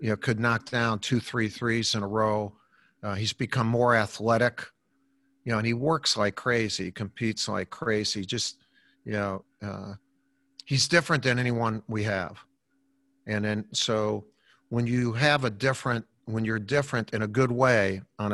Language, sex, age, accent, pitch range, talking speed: English, male, 50-69, American, 105-125 Hz, 170 wpm